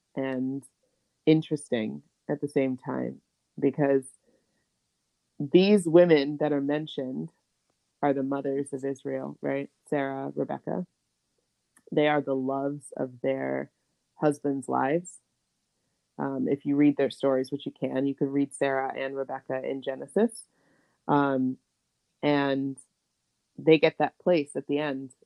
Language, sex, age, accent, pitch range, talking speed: English, female, 20-39, American, 135-150 Hz, 130 wpm